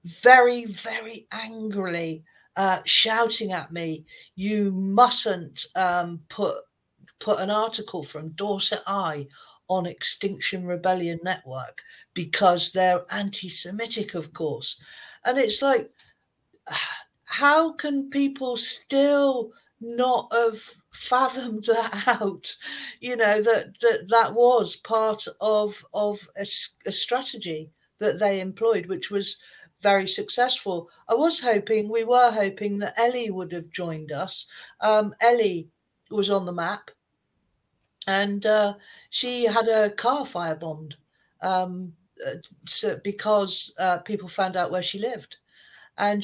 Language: English